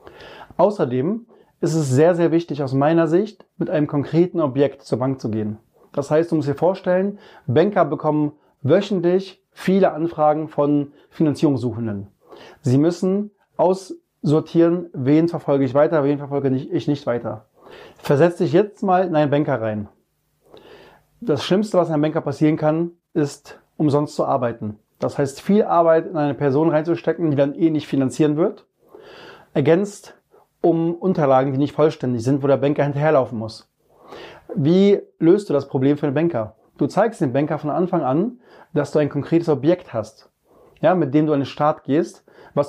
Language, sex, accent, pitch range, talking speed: German, male, German, 140-170 Hz, 165 wpm